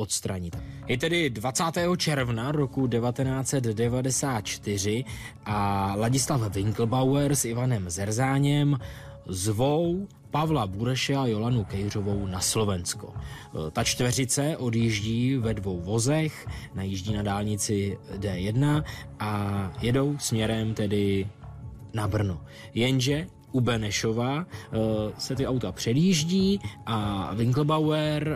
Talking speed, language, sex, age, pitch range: 95 wpm, Czech, male, 20-39, 105-130 Hz